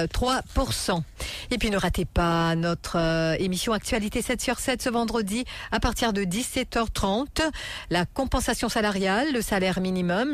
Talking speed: 145 wpm